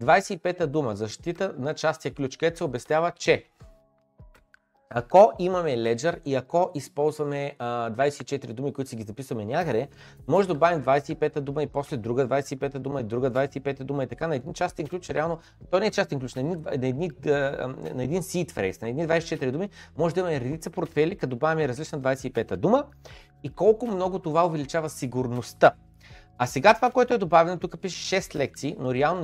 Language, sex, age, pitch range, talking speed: Bulgarian, male, 30-49, 120-165 Hz, 180 wpm